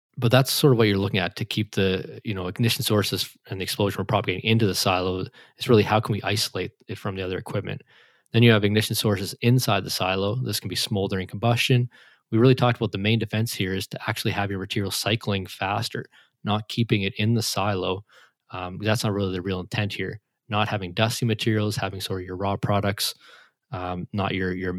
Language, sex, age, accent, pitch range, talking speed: English, male, 20-39, American, 95-115 Hz, 220 wpm